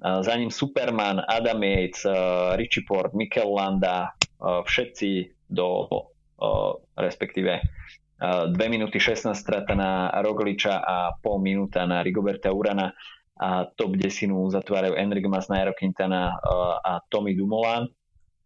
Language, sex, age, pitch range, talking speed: Slovak, male, 20-39, 95-105 Hz, 110 wpm